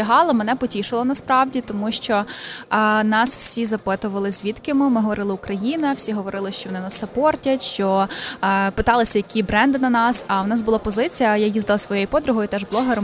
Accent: native